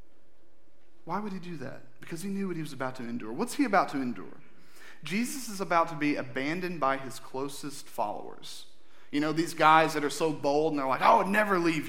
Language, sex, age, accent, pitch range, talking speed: English, male, 30-49, American, 140-190 Hz, 220 wpm